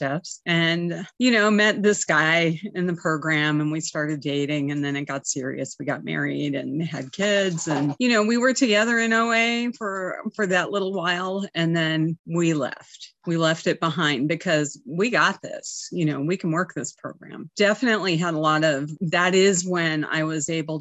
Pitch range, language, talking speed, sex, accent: 150-180 Hz, English, 195 wpm, female, American